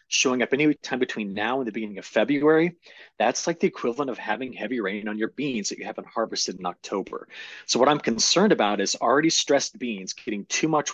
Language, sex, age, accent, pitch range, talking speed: English, male, 30-49, American, 105-135 Hz, 220 wpm